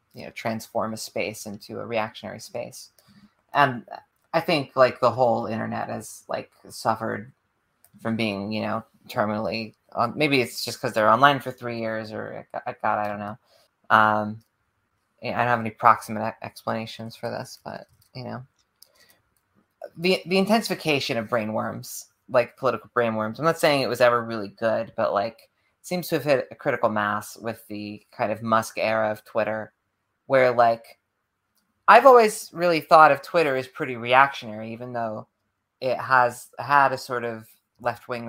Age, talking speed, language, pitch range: 30-49, 165 wpm, English, 110-125 Hz